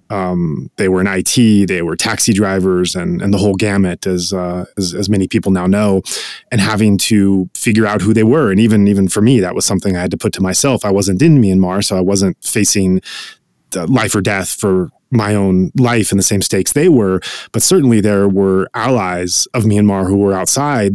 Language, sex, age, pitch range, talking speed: English, male, 20-39, 95-115 Hz, 220 wpm